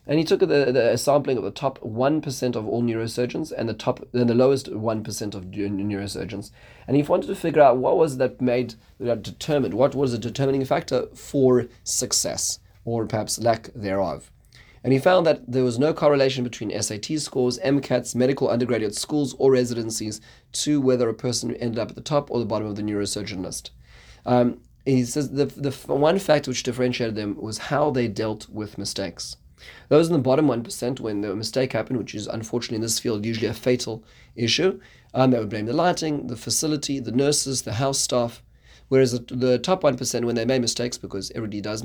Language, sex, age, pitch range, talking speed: English, male, 30-49, 110-135 Hz, 200 wpm